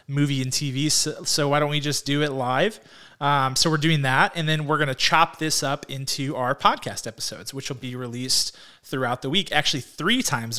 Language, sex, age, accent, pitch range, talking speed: English, male, 30-49, American, 130-155 Hz, 220 wpm